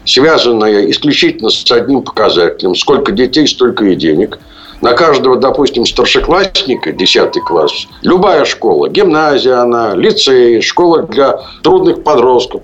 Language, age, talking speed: Russian, 60-79, 120 wpm